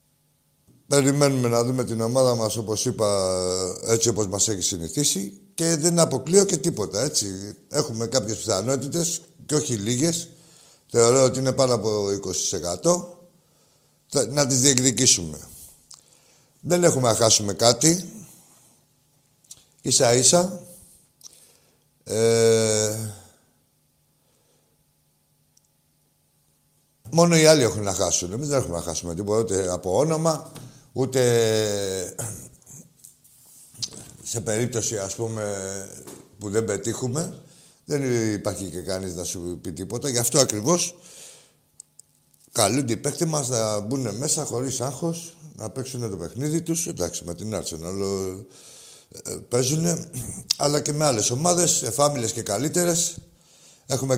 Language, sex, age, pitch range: Greek, male, 60-79, 105-160 Hz